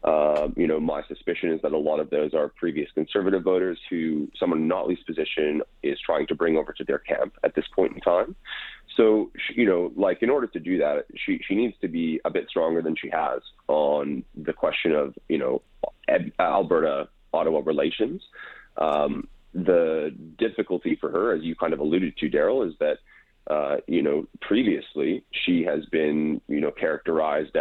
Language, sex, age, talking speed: English, male, 30-49, 185 wpm